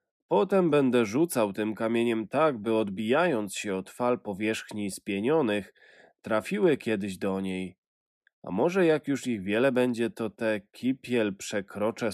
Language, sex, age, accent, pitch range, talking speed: Polish, male, 20-39, native, 105-145 Hz, 140 wpm